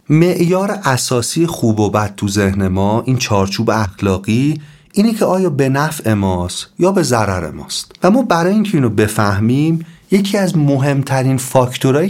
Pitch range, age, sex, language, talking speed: 110-165 Hz, 40-59, male, Persian, 155 wpm